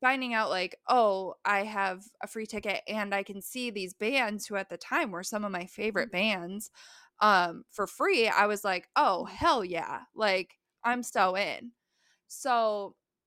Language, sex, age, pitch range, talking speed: English, female, 20-39, 190-225 Hz, 175 wpm